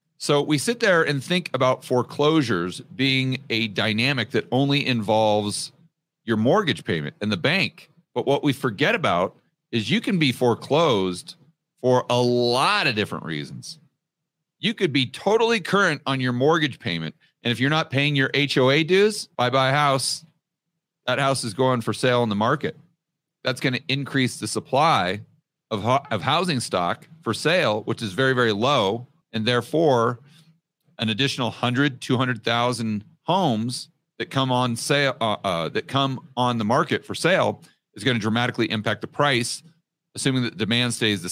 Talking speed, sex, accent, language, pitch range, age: 165 wpm, male, American, English, 115-150 Hz, 40-59